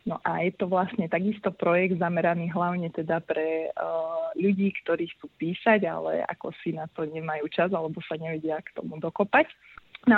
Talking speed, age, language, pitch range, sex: 175 wpm, 30-49, Slovak, 170-195 Hz, female